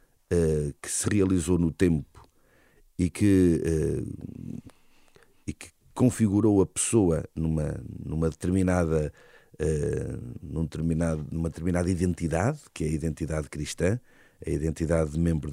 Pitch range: 80-110 Hz